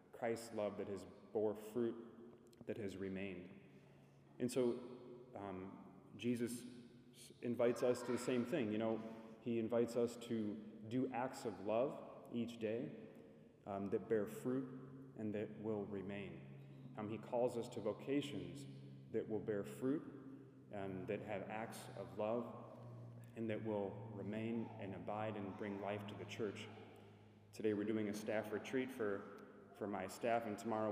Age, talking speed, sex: 30-49, 155 wpm, male